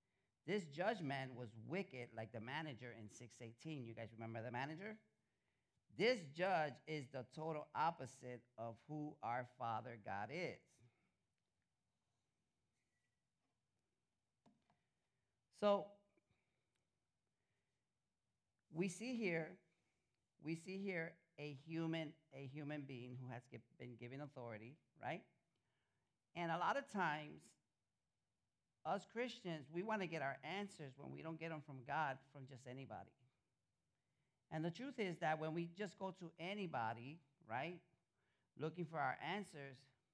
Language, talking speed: English, 125 wpm